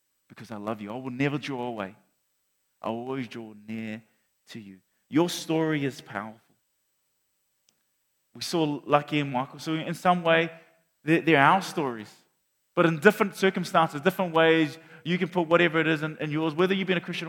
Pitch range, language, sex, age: 115-155 Hz, English, male, 30-49